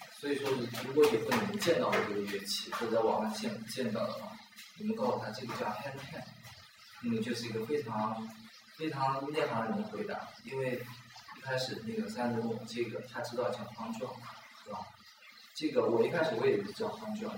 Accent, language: native, Chinese